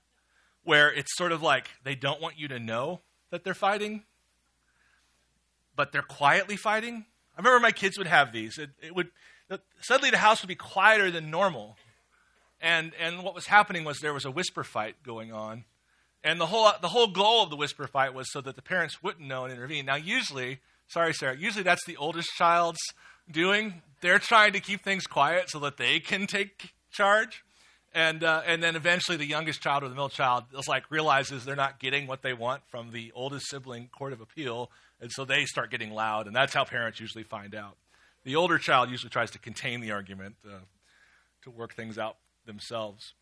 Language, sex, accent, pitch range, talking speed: English, male, American, 125-175 Hz, 205 wpm